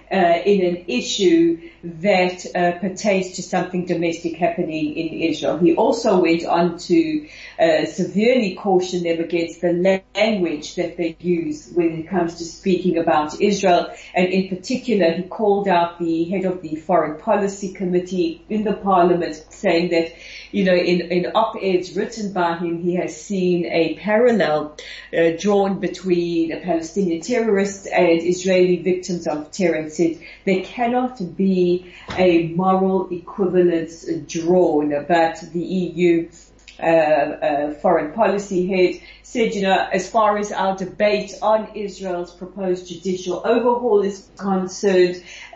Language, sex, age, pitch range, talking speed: English, female, 40-59, 170-195 Hz, 140 wpm